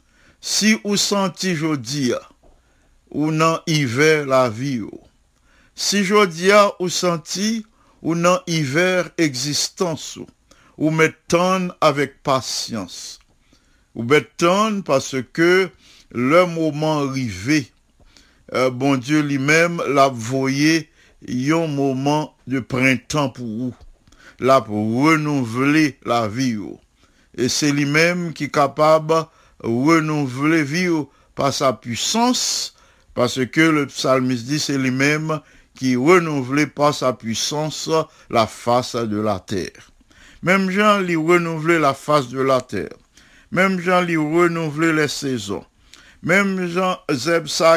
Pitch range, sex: 130-165 Hz, male